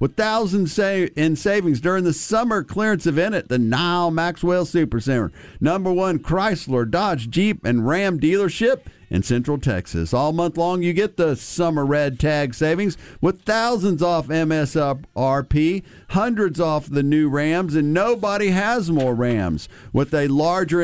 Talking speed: 150 wpm